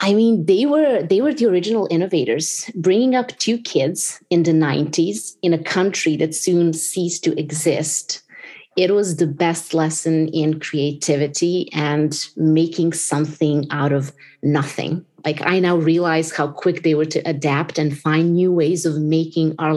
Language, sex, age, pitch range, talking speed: English, female, 30-49, 150-170 Hz, 165 wpm